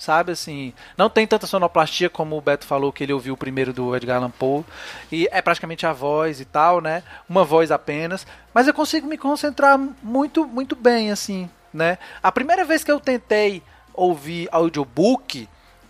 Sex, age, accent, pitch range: male, 20-39, Brazilian, 160-245 Hz